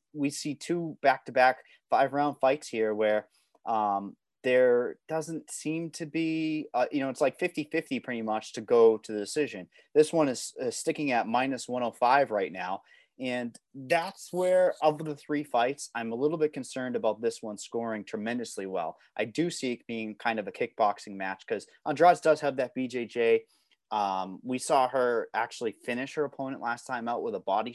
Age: 30-49